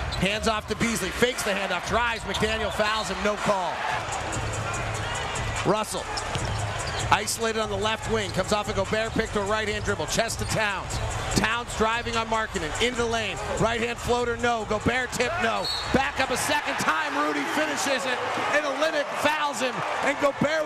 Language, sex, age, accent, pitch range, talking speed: English, male, 30-49, American, 215-270 Hz, 180 wpm